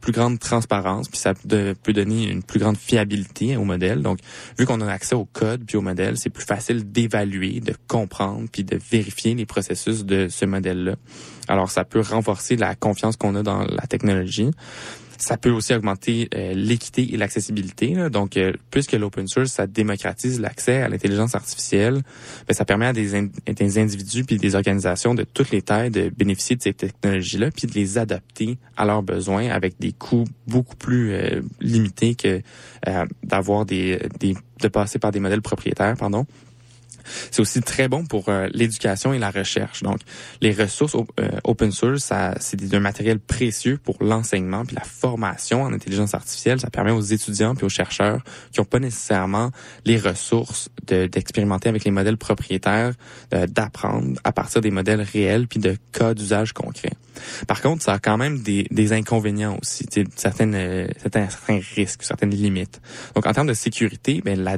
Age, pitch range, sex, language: 20-39, 100-120 Hz, male, French